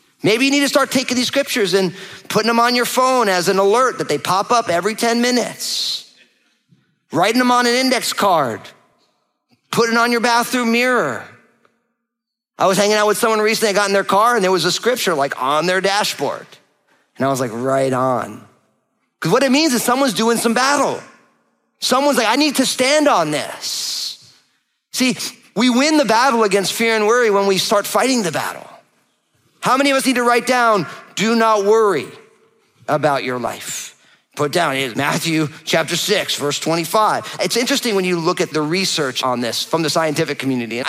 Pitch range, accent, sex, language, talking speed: 145-235 Hz, American, male, English, 195 wpm